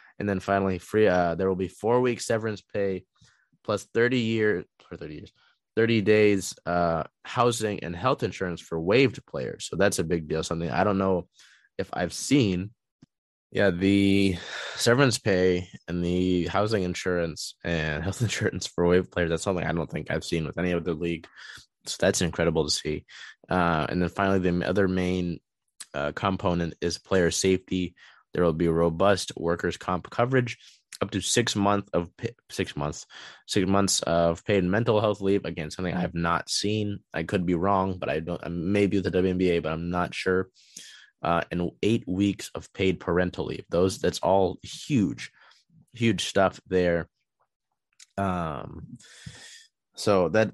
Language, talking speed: English, 165 wpm